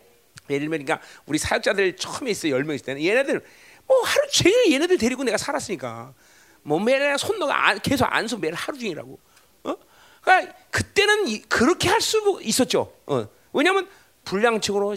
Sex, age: male, 40-59